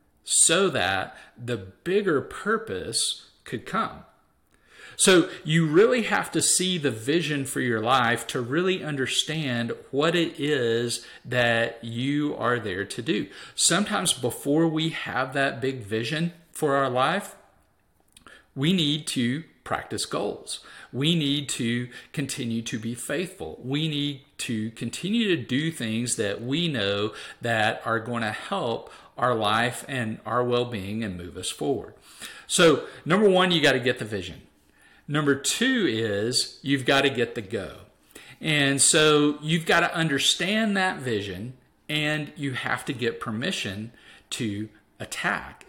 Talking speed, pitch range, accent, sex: 145 wpm, 120-155 Hz, American, male